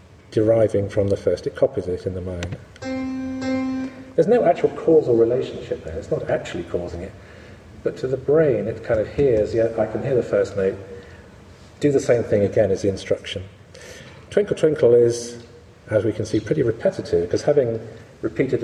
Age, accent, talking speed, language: 40-59, British, 180 wpm, English